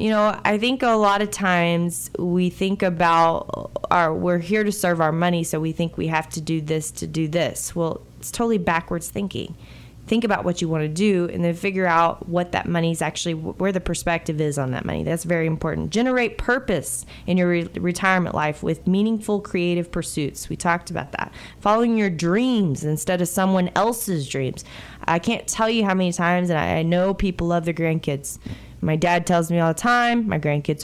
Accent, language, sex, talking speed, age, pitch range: American, English, female, 205 wpm, 20-39, 160-195 Hz